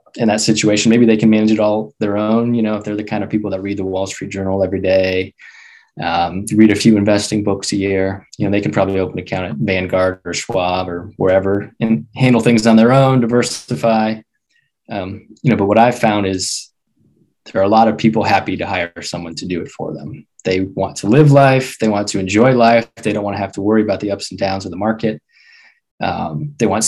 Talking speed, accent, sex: 240 wpm, American, male